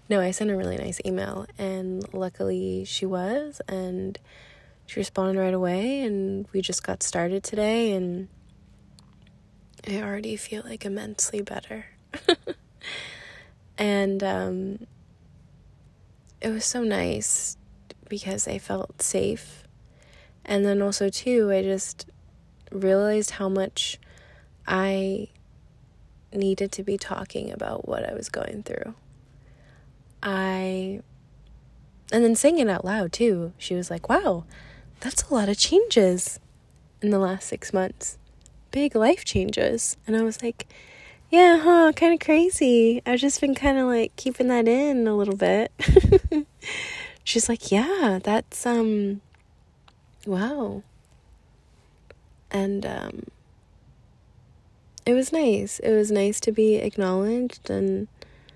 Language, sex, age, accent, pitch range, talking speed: English, female, 20-39, American, 185-230 Hz, 125 wpm